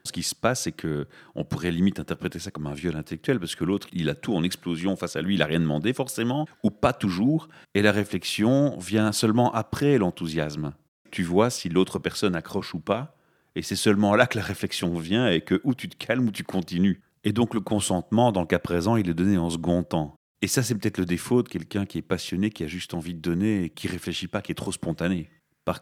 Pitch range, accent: 85-110 Hz, French